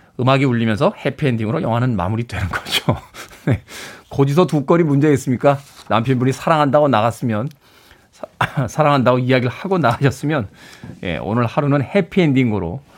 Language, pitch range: Korean, 115-155 Hz